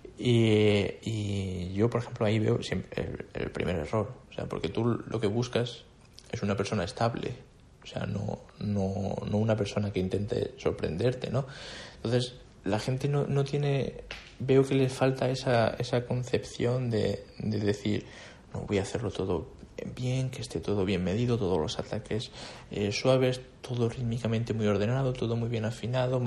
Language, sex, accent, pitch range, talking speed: Spanish, male, Spanish, 105-125 Hz, 170 wpm